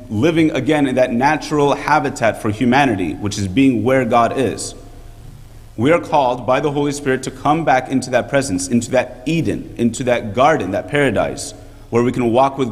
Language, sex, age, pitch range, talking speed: English, male, 30-49, 110-135 Hz, 190 wpm